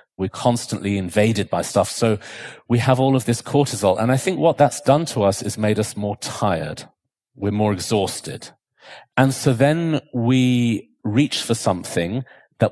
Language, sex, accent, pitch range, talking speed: English, male, British, 100-130 Hz, 170 wpm